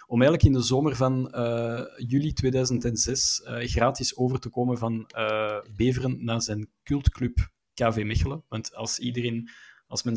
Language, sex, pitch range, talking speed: Dutch, male, 110-130 Hz, 160 wpm